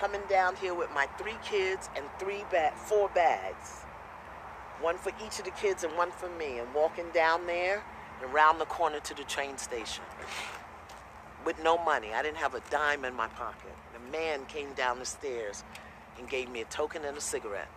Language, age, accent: English, 40-59, American